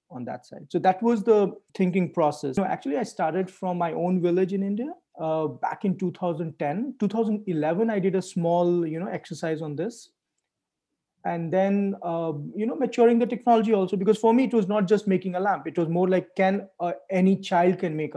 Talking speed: 210 wpm